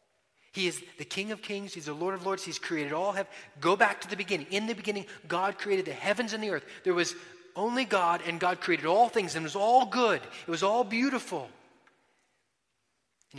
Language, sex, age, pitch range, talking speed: English, male, 30-49, 130-180 Hz, 220 wpm